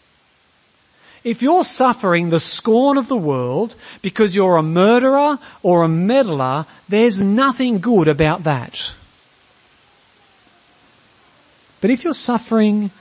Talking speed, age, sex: 110 wpm, 40-59, male